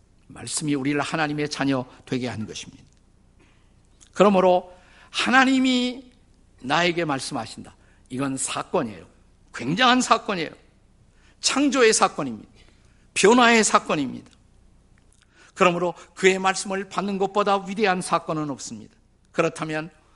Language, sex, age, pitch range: Korean, male, 50-69, 120-200 Hz